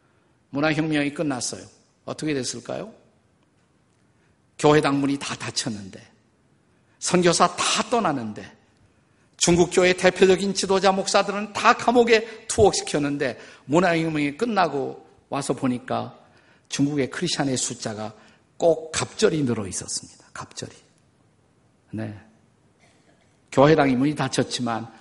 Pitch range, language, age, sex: 135-200 Hz, Korean, 50-69, male